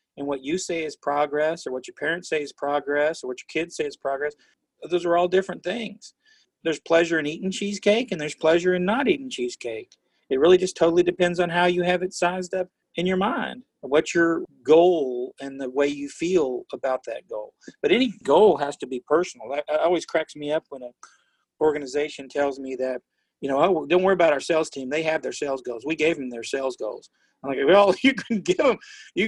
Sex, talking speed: male, 220 wpm